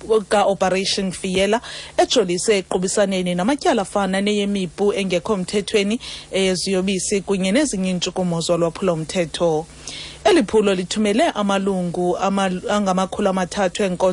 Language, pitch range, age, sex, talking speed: English, 180-205 Hz, 30-49, female, 145 wpm